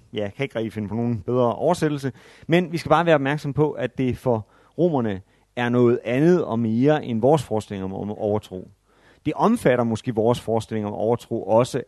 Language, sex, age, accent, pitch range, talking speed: Danish, male, 30-49, native, 110-130 Hz, 195 wpm